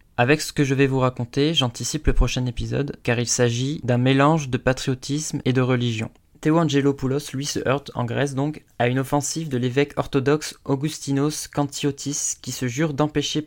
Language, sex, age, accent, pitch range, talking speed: French, male, 20-39, French, 130-150 Hz, 180 wpm